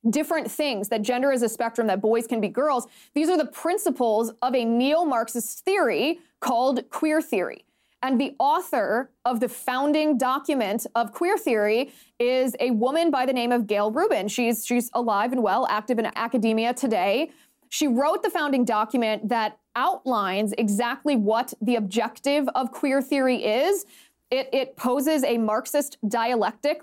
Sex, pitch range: female, 225-275 Hz